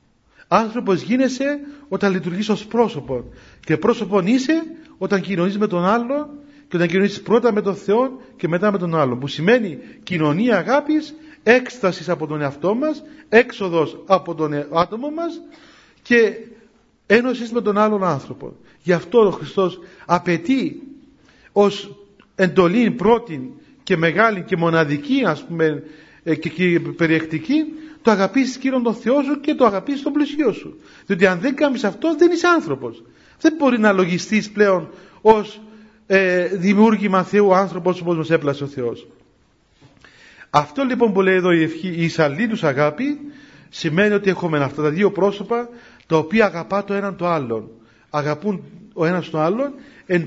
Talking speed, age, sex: 155 wpm, 40-59, male